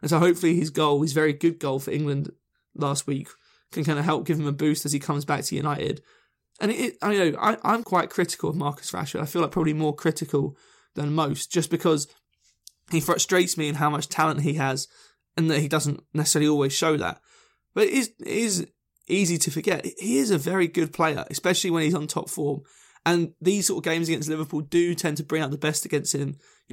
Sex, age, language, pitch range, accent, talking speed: male, 20-39, English, 145-170 Hz, British, 220 wpm